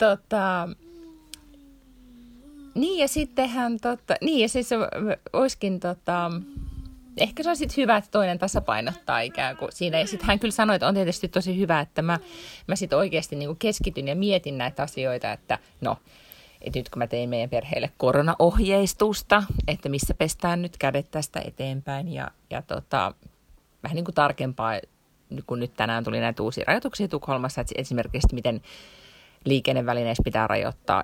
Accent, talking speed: native, 160 wpm